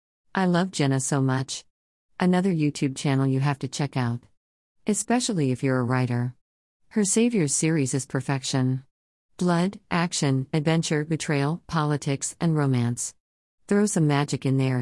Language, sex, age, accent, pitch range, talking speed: English, female, 50-69, American, 130-160 Hz, 140 wpm